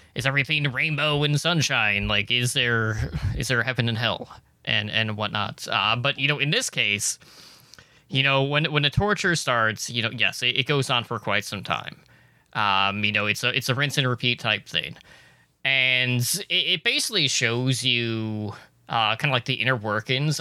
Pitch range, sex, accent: 110-140 Hz, male, American